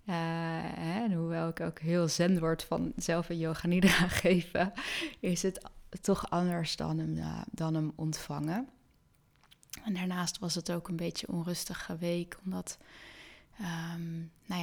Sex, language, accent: female, Dutch, Dutch